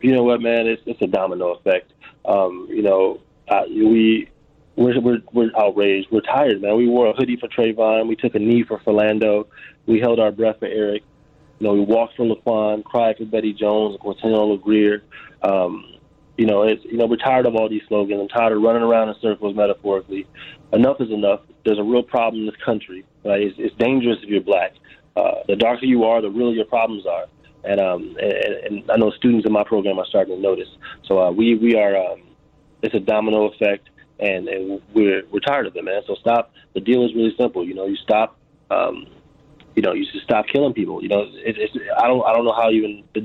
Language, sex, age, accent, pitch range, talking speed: English, male, 30-49, American, 105-120 Hz, 215 wpm